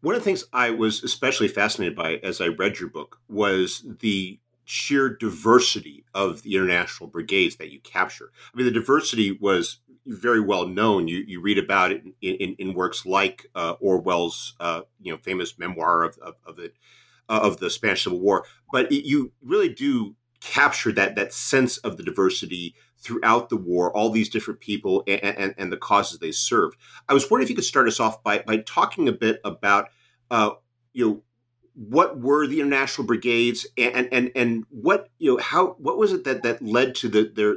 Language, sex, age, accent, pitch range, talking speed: English, male, 50-69, American, 105-130 Hz, 200 wpm